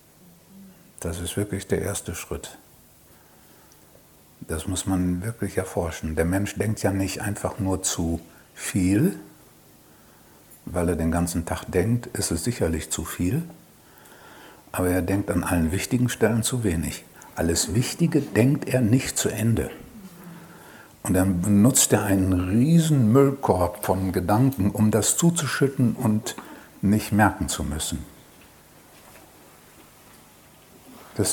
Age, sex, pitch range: 60-79, male, 90-130 Hz